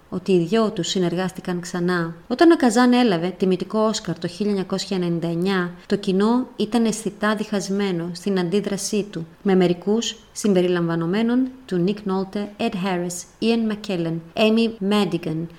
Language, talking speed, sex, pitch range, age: Greek, 130 wpm, female, 175-215 Hz, 30-49